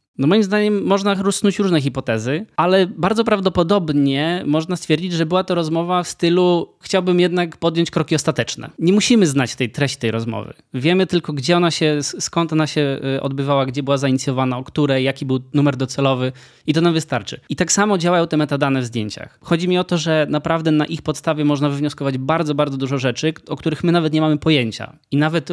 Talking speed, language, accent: 195 wpm, Polish, native